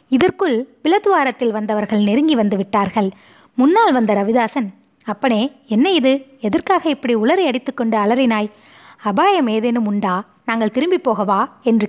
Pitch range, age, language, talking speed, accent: 210-280 Hz, 20-39, Tamil, 125 wpm, native